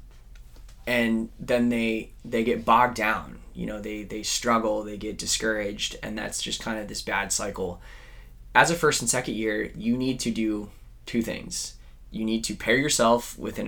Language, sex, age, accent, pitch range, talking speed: English, male, 20-39, American, 105-120 Hz, 185 wpm